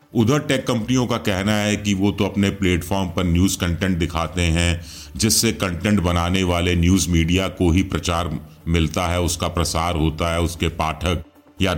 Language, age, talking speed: Hindi, 40-59, 175 wpm